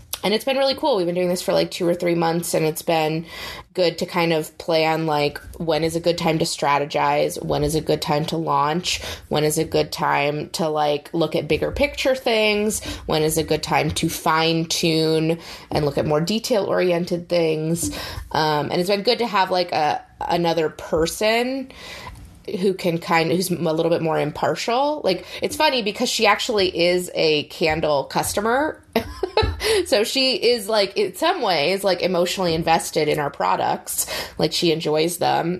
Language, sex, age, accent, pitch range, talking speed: English, female, 20-39, American, 155-195 Hz, 190 wpm